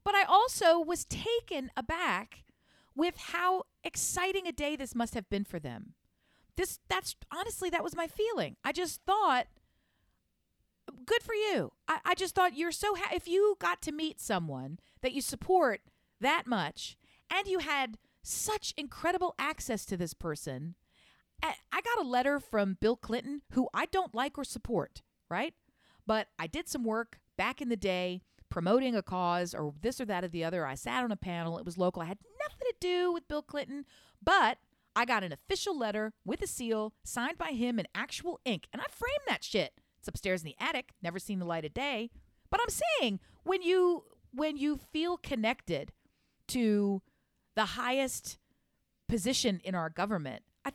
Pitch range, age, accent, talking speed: 210-350 Hz, 40-59, American, 180 wpm